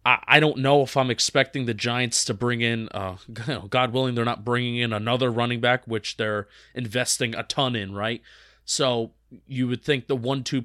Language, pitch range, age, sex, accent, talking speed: English, 110-135 Hz, 20-39, male, American, 190 wpm